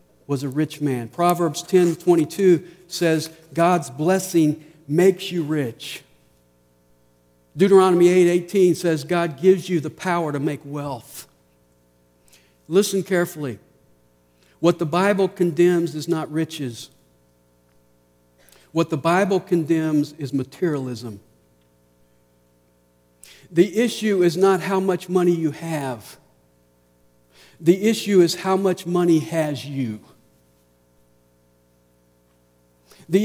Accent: American